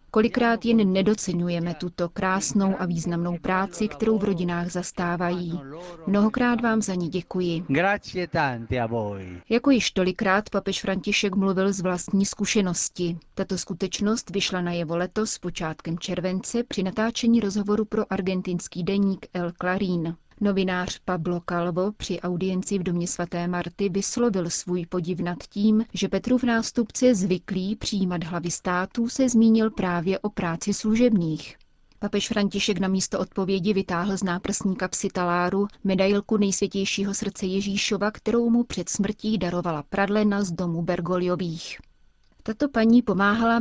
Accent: native